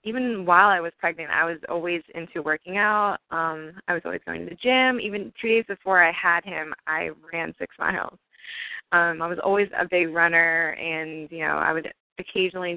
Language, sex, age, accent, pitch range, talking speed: English, female, 20-39, American, 170-200 Hz, 200 wpm